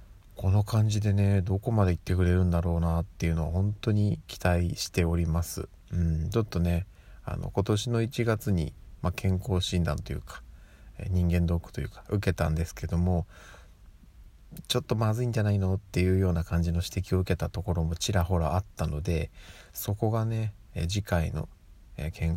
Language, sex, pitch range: Japanese, male, 85-105 Hz